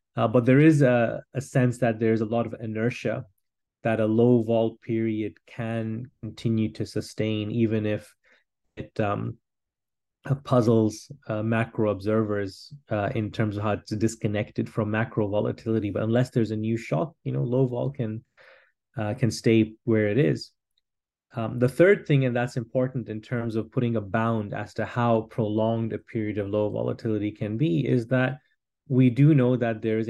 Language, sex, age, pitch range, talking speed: English, male, 30-49, 110-125 Hz, 175 wpm